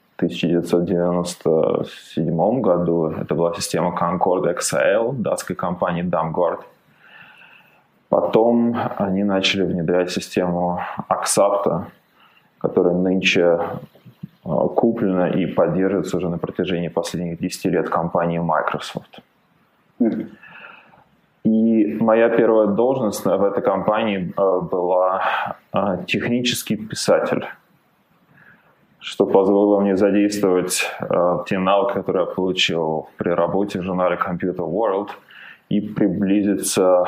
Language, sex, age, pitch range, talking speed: Russian, male, 20-39, 90-105 Hz, 90 wpm